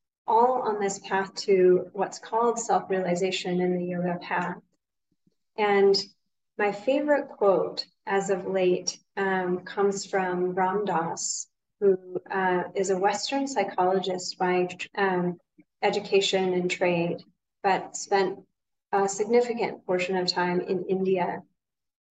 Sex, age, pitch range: female, 30-49, 185-210 Hz